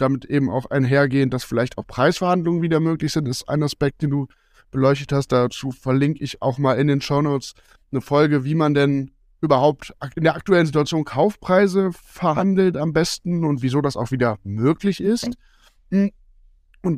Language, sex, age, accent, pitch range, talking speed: German, male, 10-29, German, 130-170 Hz, 170 wpm